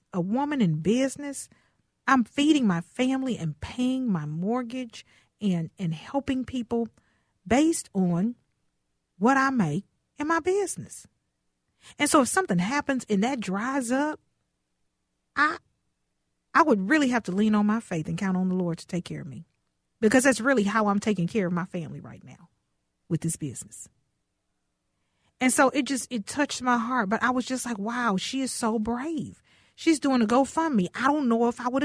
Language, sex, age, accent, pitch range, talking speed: English, female, 40-59, American, 200-305 Hz, 180 wpm